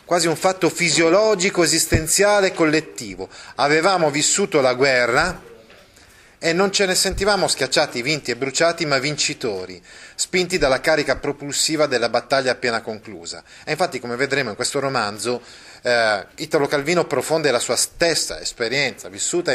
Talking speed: 140 wpm